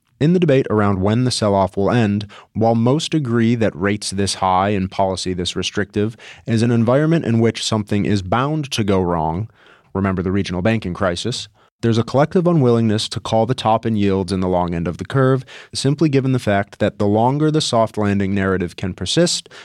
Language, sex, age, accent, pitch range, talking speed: English, male, 30-49, American, 100-130 Hz, 200 wpm